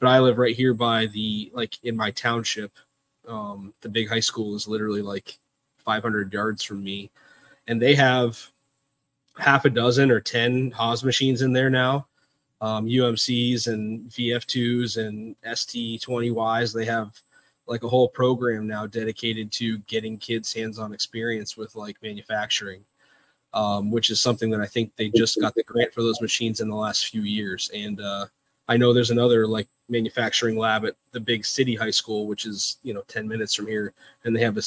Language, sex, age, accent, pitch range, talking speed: English, male, 20-39, American, 110-120 Hz, 190 wpm